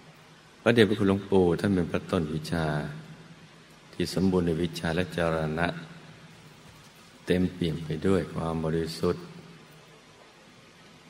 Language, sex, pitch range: Thai, male, 80-100 Hz